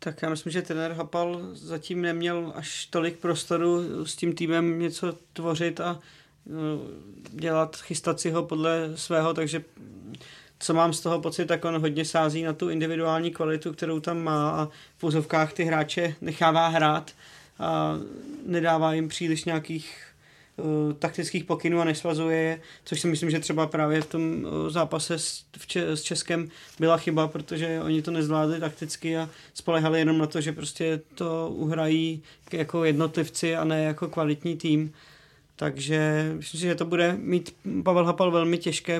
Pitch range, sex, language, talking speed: 155-170 Hz, male, Czech, 160 wpm